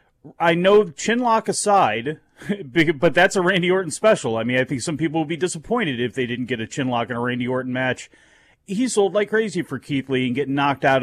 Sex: male